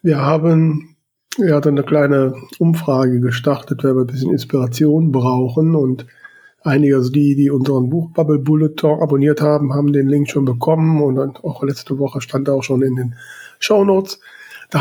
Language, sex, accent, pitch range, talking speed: German, male, German, 135-160 Hz, 160 wpm